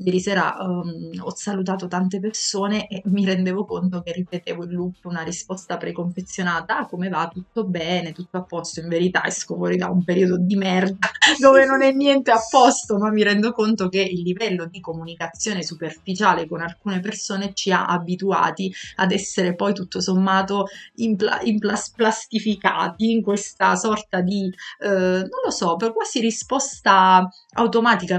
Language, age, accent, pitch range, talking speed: Italian, 30-49, native, 175-210 Hz, 165 wpm